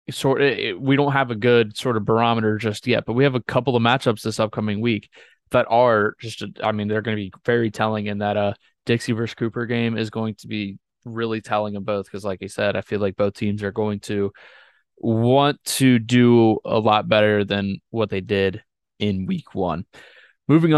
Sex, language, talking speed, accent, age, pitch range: male, English, 220 wpm, American, 20-39, 105-125 Hz